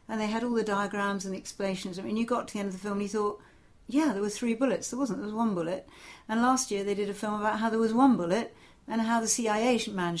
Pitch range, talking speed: 190-240 Hz, 295 wpm